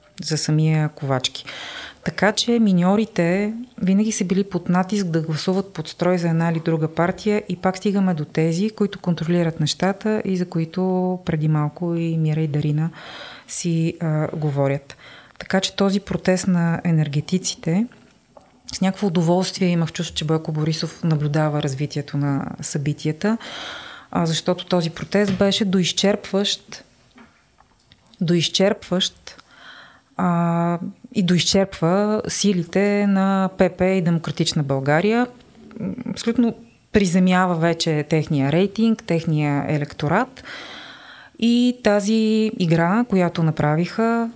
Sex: female